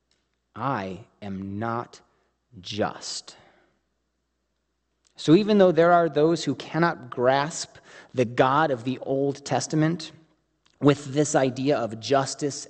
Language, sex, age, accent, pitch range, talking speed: English, male, 30-49, American, 120-170 Hz, 115 wpm